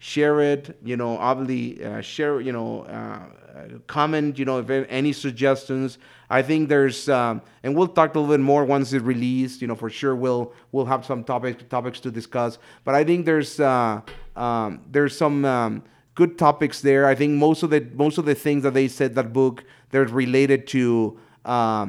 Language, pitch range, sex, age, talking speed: English, 120-145 Hz, male, 30-49, 195 wpm